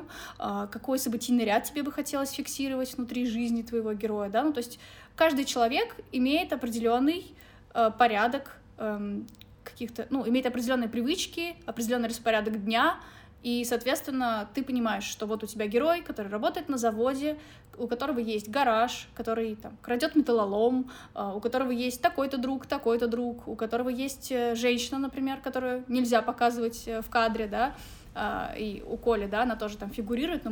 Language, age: Russian, 20-39